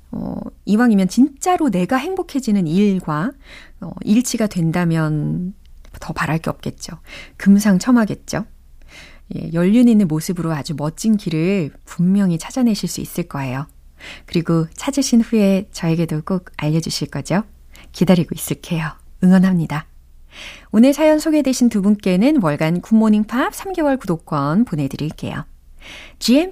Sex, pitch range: female, 165-250 Hz